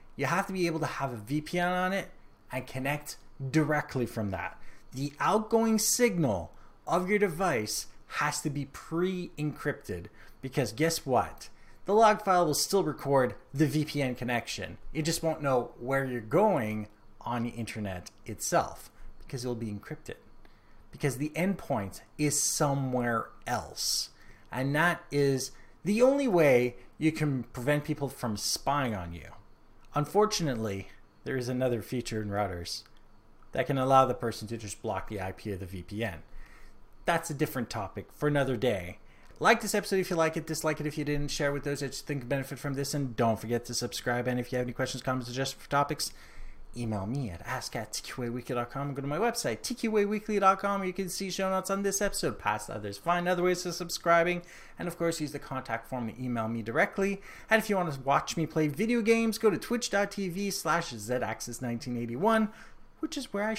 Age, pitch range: 30-49, 115-170 Hz